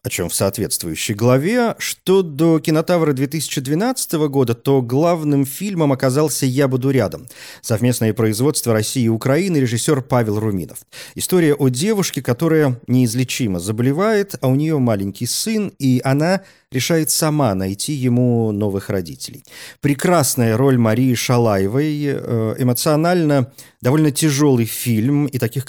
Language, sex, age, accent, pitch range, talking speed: Russian, male, 40-59, native, 110-150 Hz, 220 wpm